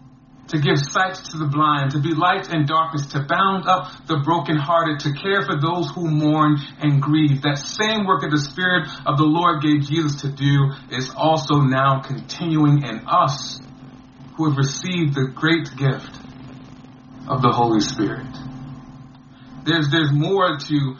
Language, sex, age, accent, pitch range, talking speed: English, male, 40-59, American, 135-155 Hz, 165 wpm